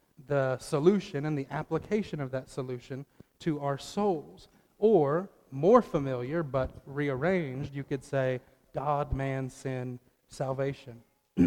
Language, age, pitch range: English, 40-59, 130-160 Hz